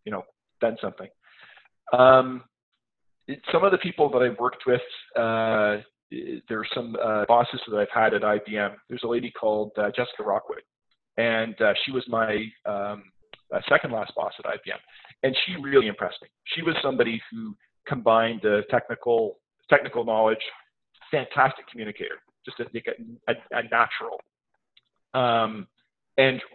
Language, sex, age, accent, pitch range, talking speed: English, male, 40-59, American, 110-135 Hz, 150 wpm